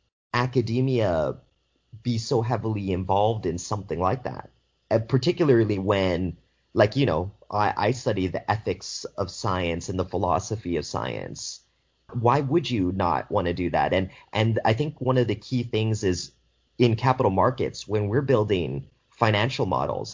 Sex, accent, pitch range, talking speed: male, American, 90-120 Hz, 160 wpm